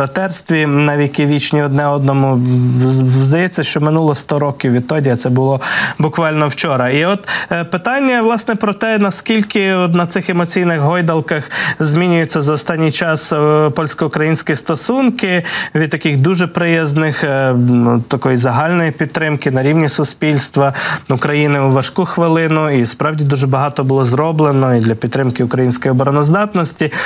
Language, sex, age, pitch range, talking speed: Ukrainian, male, 20-39, 140-175 Hz, 130 wpm